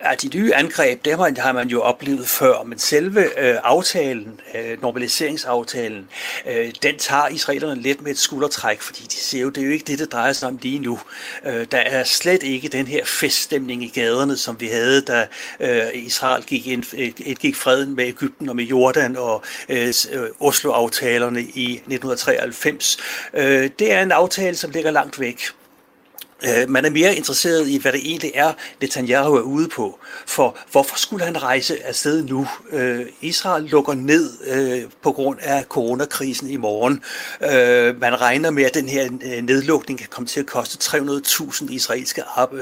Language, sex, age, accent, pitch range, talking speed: Danish, male, 60-79, native, 125-150 Hz, 170 wpm